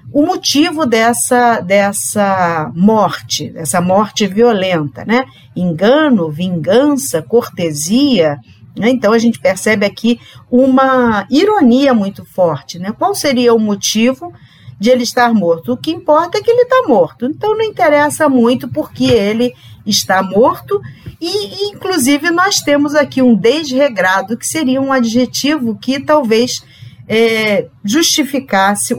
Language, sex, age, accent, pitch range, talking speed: Portuguese, female, 50-69, Brazilian, 180-270 Hz, 130 wpm